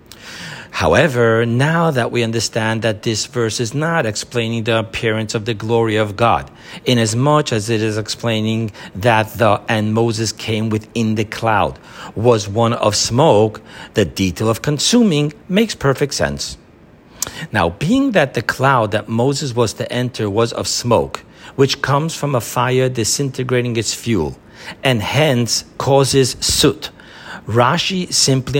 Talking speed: 145 wpm